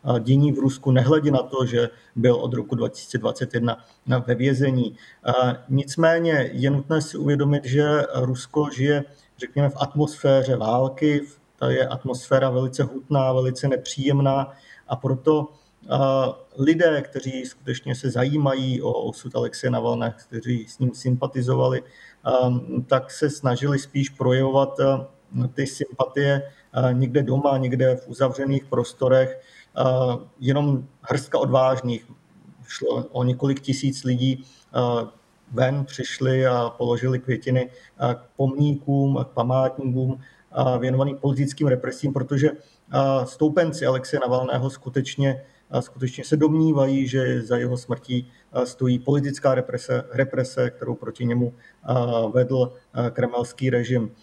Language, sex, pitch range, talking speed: Slovak, male, 125-140 Hz, 120 wpm